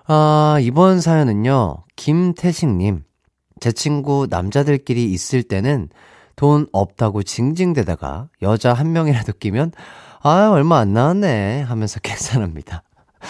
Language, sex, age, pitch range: Korean, male, 30-49, 100-165 Hz